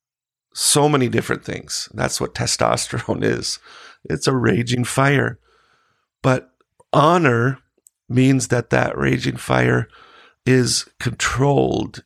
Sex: male